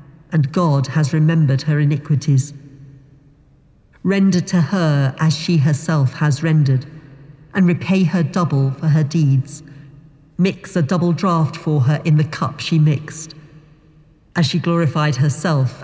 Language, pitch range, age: English, 140-165 Hz, 40-59